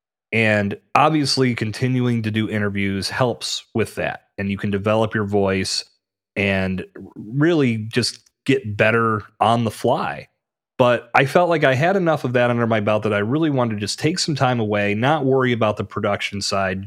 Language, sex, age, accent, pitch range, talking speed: English, male, 30-49, American, 100-120 Hz, 180 wpm